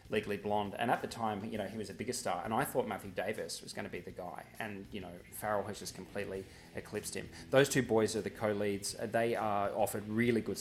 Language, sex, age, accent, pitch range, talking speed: English, male, 20-39, Australian, 105-120 Hz, 250 wpm